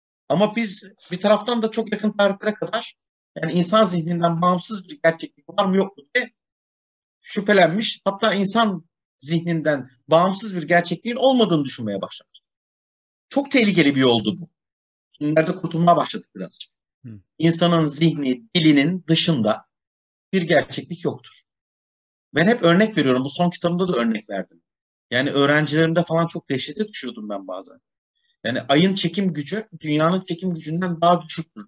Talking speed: 140 wpm